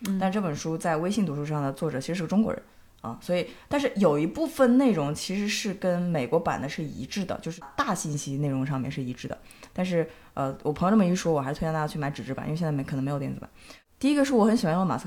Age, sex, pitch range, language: 20-39, female, 155-230 Hz, Chinese